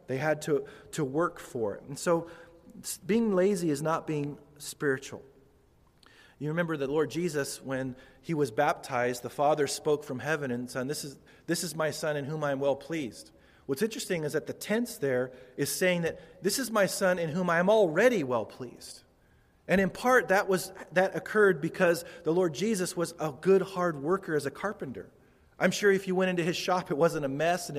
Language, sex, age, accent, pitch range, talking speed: English, male, 40-59, American, 140-180 Hz, 205 wpm